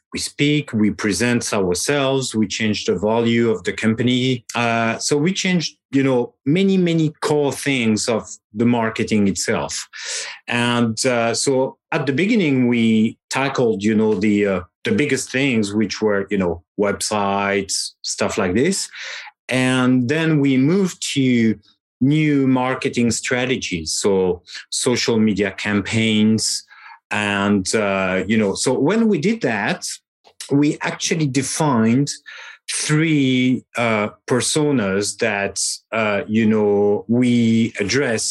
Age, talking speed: 40-59, 130 wpm